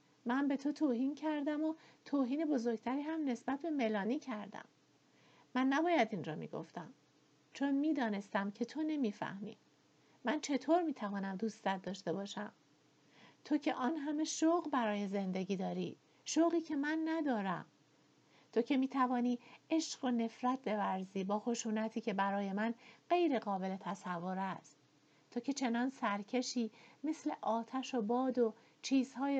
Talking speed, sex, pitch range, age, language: 135 wpm, female, 190-260 Hz, 50-69, Persian